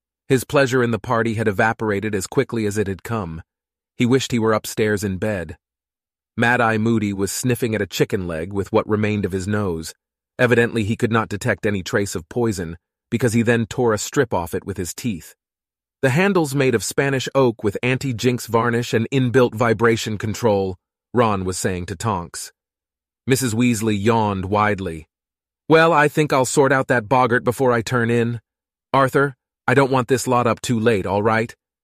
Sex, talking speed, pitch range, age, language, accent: male, 185 wpm, 95-125 Hz, 40-59, Italian, American